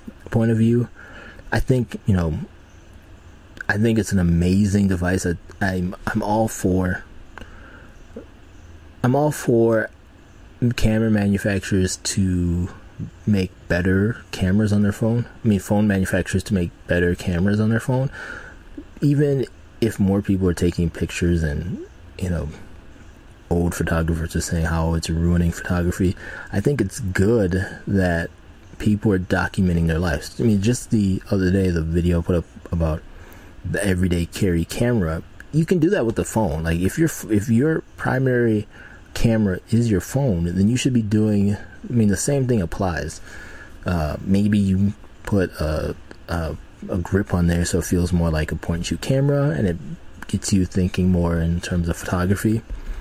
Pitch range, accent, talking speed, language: 85-110 Hz, American, 160 wpm, English